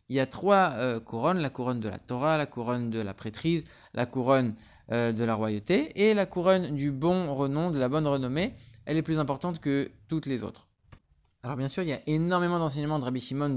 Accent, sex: French, male